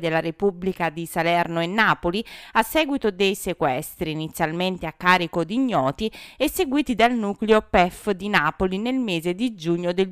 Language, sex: Italian, female